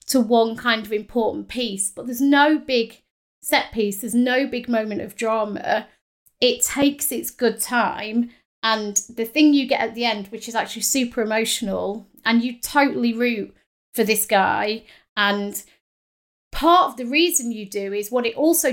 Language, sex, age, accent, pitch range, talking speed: English, female, 30-49, British, 215-260 Hz, 175 wpm